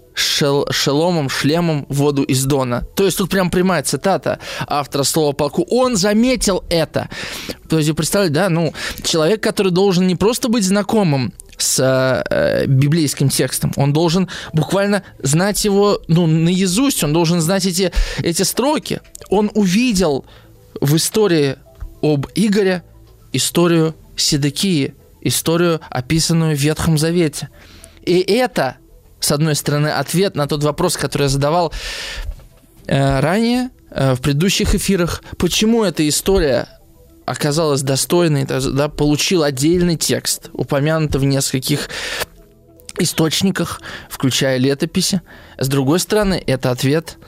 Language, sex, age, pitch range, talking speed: Russian, male, 20-39, 135-180 Hz, 125 wpm